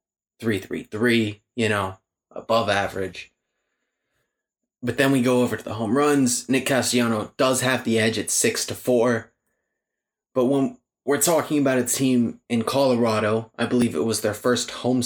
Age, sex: 20-39, male